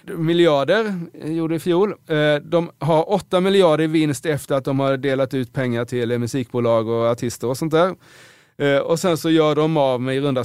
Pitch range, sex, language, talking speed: 120-165 Hz, male, Swedish, 190 wpm